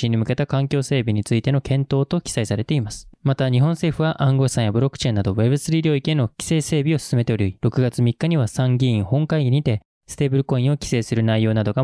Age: 20-39